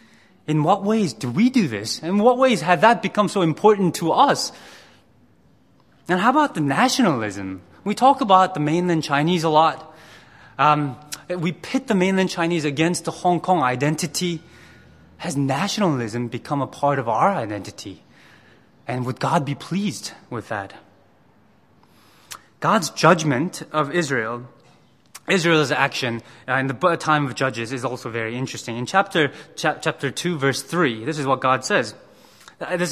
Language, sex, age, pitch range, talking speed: English, male, 20-39, 135-200 Hz, 155 wpm